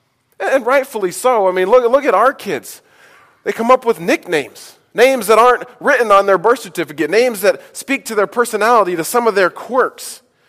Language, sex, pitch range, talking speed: English, male, 180-245 Hz, 195 wpm